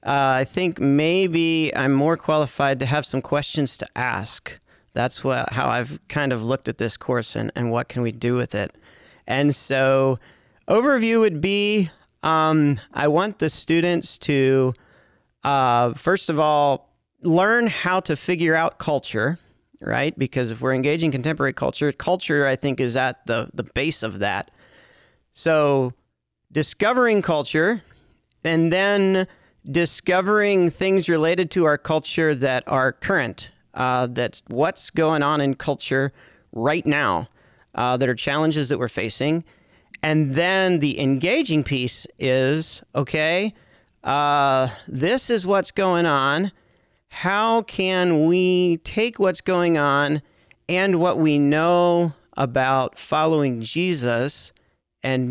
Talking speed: 140 wpm